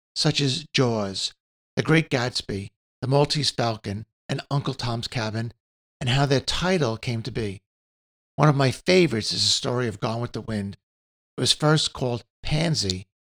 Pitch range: 105-140 Hz